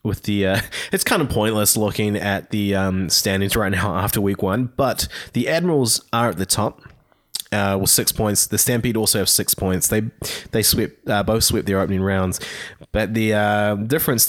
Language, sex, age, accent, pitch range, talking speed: English, male, 20-39, Australian, 95-115 Hz, 195 wpm